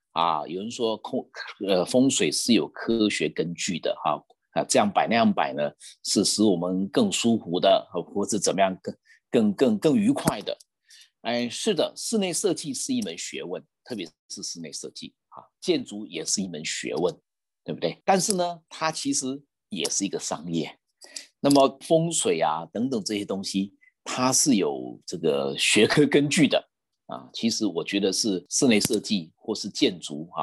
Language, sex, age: Chinese, male, 50-69